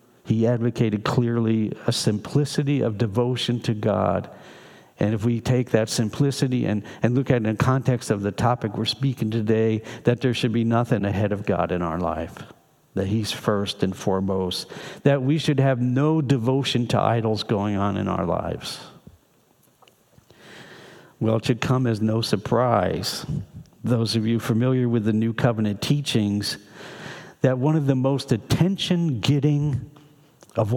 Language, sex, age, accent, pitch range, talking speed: English, male, 60-79, American, 110-140 Hz, 160 wpm